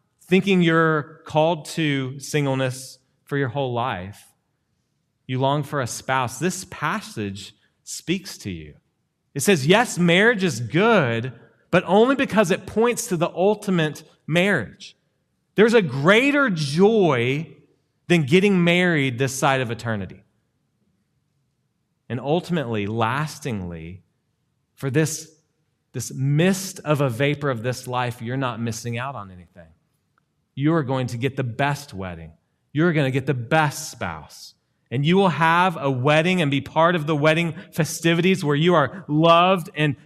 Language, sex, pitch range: English, male, 130-165 Hz